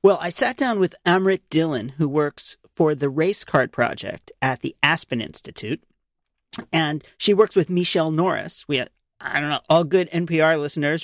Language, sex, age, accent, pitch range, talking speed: English, male, 40-59, American, 155-200 Hz, 165 wpm